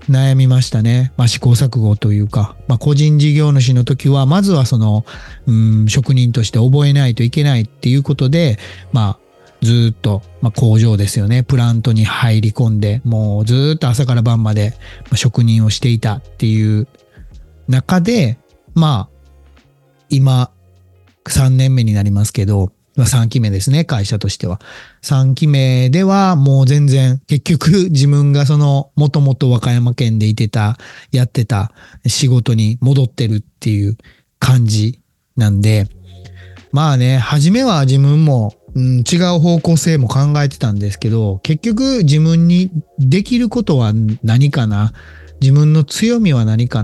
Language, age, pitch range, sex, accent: Japanese, 40-59, 110-140 Hz, male, native